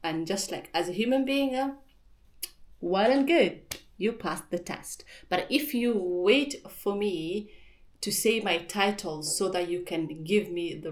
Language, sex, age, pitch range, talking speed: English, female, 30-49, 165-230 Hz, 170 wpm